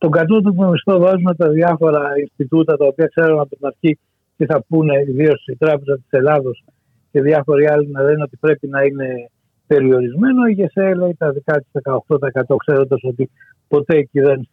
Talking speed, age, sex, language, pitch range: 180 wpm, 60-79, male, Greek, 135-185 Hz